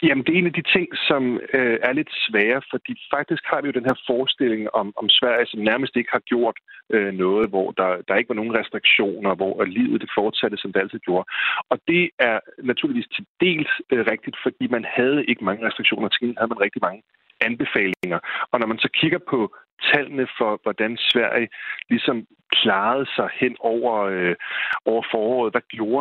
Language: Danish